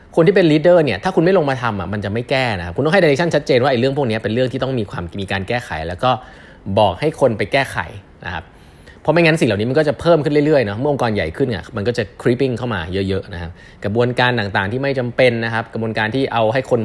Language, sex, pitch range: Thai, male, 100-135 Hz